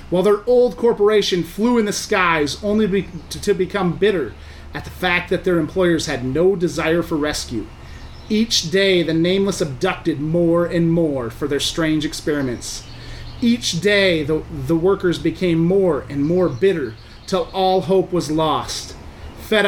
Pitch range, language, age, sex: 135-195 Hz, English, 30-49, male